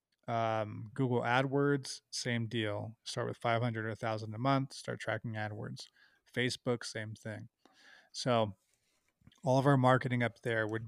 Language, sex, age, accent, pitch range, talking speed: English, male, 20-39, American, 110-130 Hz, 150 wpm